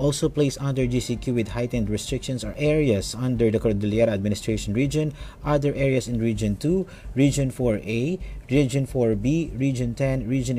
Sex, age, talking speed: male, 40-59, 145 wpm